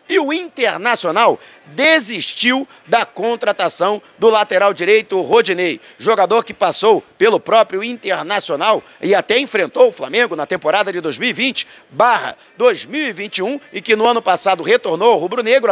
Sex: male